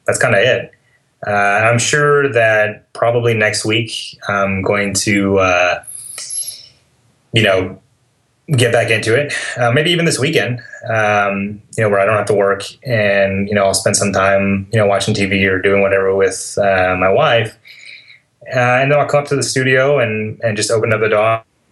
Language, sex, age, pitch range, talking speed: English, male, 20-39, 100-120 Hz, 195 wpm